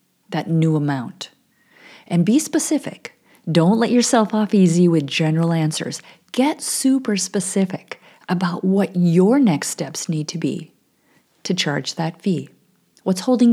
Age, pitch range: 40-59, 165-215 Hz